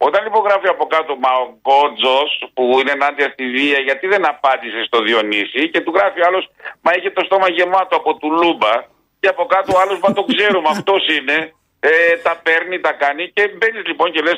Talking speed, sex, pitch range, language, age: 205 wpm, male, 130-180 Hz, Greek, 50-69